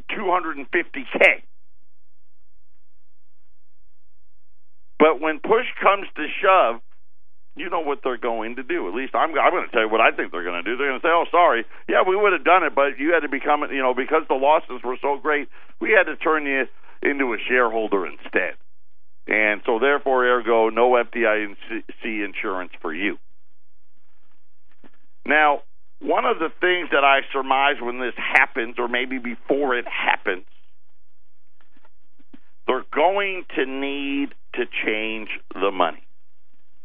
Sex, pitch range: male, 115-140 Hz